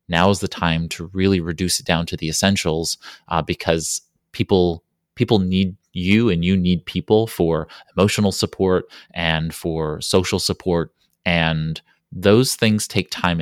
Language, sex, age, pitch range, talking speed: English, male, 30-49, 80-95 Hz, 150 wpm